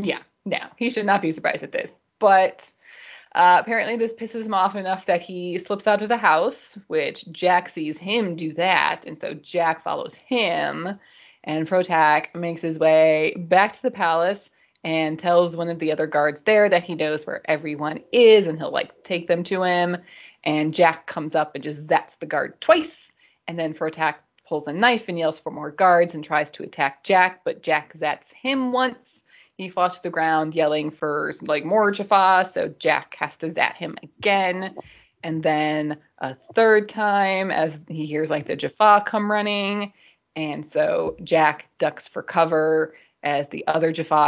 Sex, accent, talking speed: female, American, 185 wpm